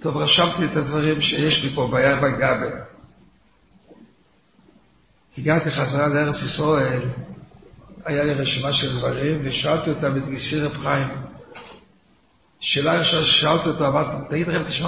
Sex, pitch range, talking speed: male, 150-180 Hz, 125 wpm